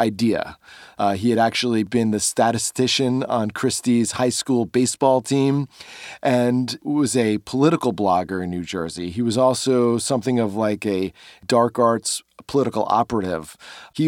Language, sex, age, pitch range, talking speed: English, male, 30-49, 115-140 Hz, 140 wpm